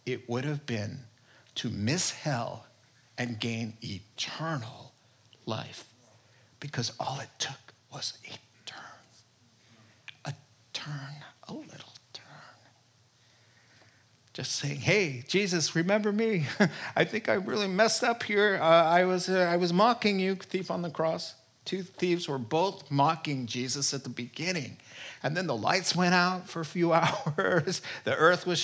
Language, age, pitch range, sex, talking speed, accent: English, 50-69, 125-180 Hz, male, 145 wpm, American